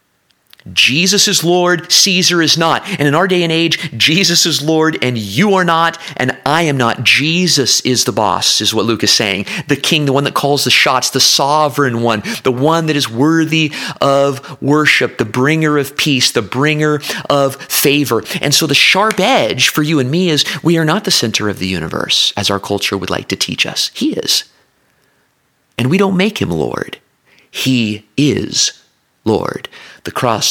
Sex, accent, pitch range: male, American, 125-165 Hz